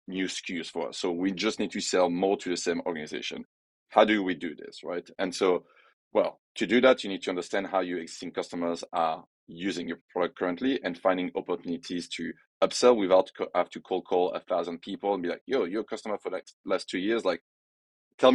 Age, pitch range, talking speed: 30-49, 90-110 Hz, 220 wpm